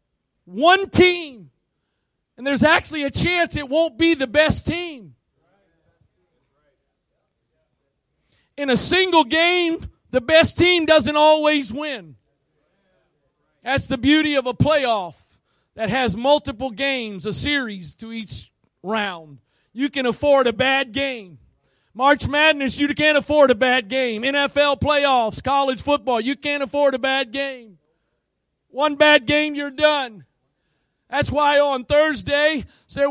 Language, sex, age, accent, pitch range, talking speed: English, male, 40-59, American, 250-305 Hz, 130 wpm